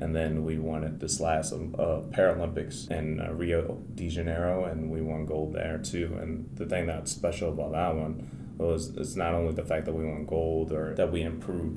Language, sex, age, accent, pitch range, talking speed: English, male, 20-39, American, 80-85 Hz, 215 wpm